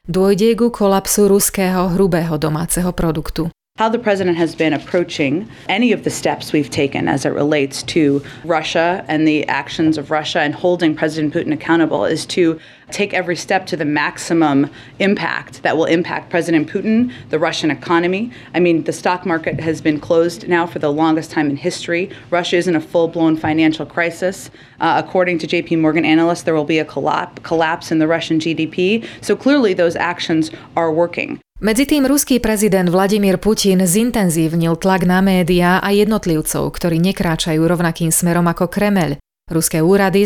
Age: 30-49